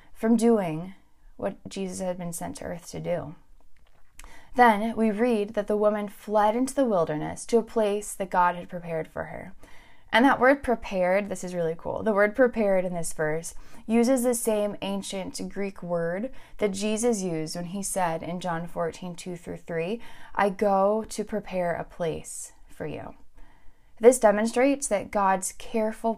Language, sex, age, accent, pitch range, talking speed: English, female, 20-39, American, 175-225 Hz, 170 wpm